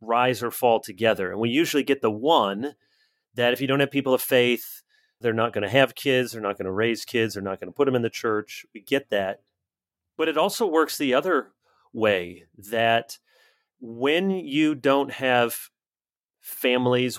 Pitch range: 110-135 Hz